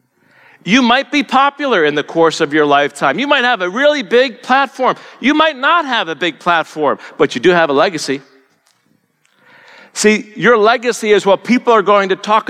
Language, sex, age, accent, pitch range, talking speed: English, male, 50-69, American, 155-250 Hz, 190 wpm